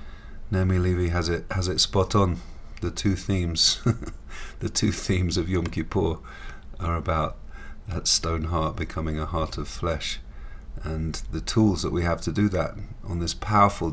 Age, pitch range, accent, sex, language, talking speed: 40-59, 80-95 Hz, British, male, English, 170 wpm